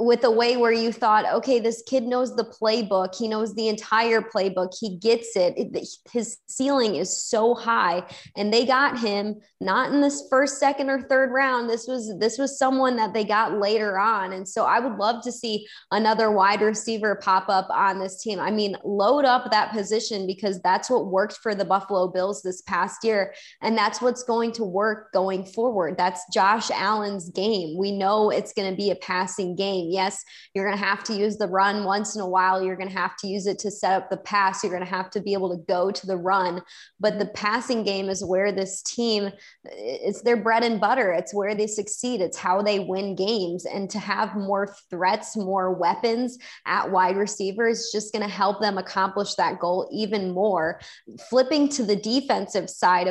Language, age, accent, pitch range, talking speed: English, 20-39, American, 195-230 Hz, 210 wpm